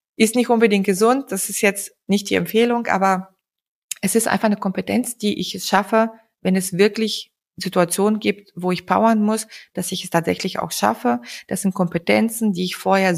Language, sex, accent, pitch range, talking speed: German, female, German, 190-230 Hz, 180 wpm